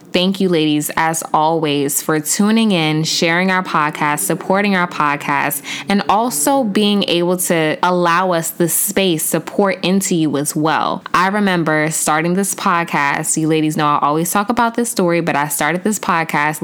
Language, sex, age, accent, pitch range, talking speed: English, female, 10-29, American, 155-190 Hz, 175 wpm